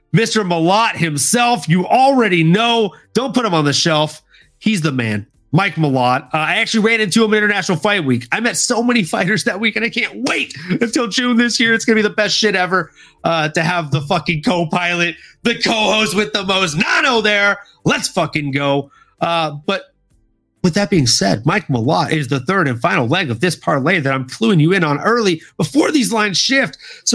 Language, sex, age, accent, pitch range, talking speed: English, male, 30-49, American, 155-215 Hz, 210 wpm